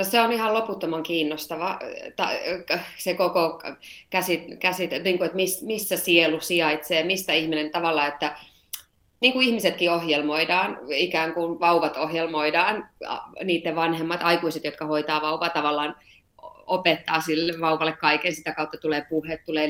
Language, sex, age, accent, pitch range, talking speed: Finnish, female, 30-49, native, 155-180 Hz, 115 wpm